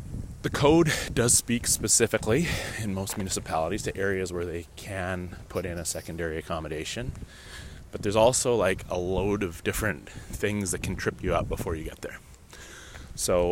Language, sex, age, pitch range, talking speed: English, male, 30-49, 90-105 Hz, 165 wpm